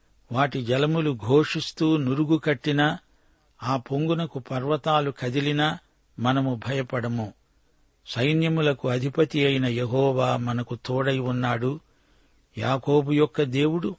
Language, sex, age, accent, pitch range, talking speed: Telugu, male, 60-79, native, 125-150 Hz, 90 wpm